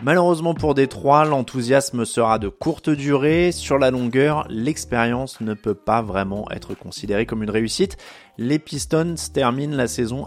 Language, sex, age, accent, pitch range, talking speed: French, male, 20-39, French, 110-145 Hz, 150 wpm